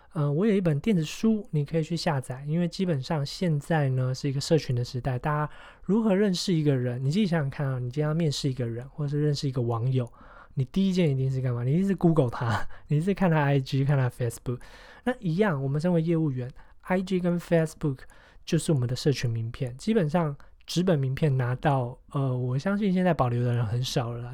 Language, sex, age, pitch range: Chinese, male, 20-39, 130-165 Hz